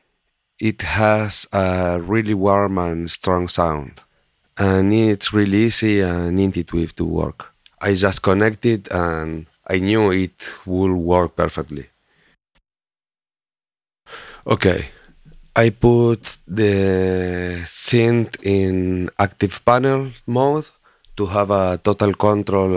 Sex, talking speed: male, 110 wpm